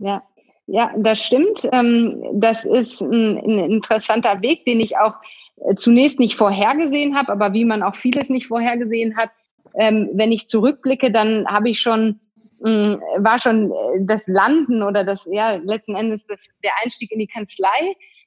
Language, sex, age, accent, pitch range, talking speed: German, female, 30-49, German, 210-240 Hz, 150 wpm